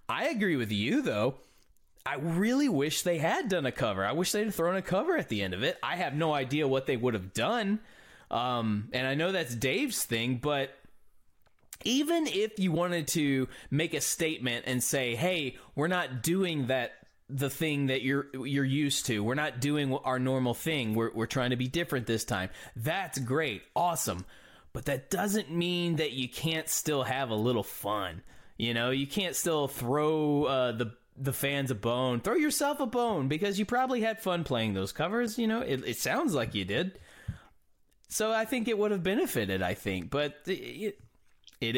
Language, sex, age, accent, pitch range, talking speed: English, male, 20-39, American, 125-175 Hz, 195 wpm